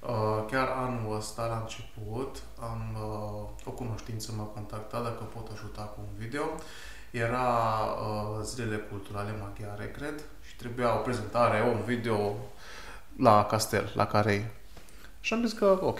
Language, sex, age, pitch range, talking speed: Romanian, male, 20-39, 105-125 Hz, 135 wpm